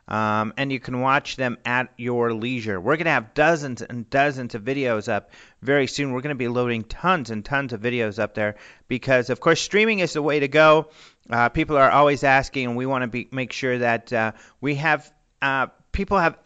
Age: 40-59